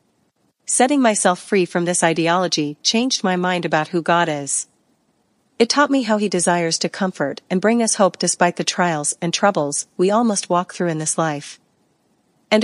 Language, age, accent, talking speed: English, 40-59, American, 185 wpm